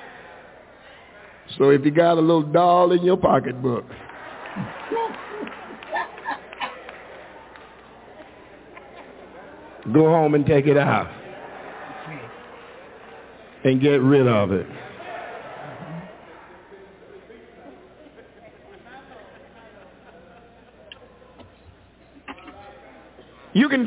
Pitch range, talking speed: 180-270 Hz, 60 wpm